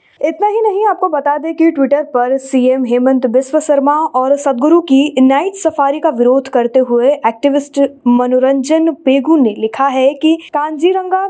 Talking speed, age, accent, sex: 160 wpm, 20-39, native, female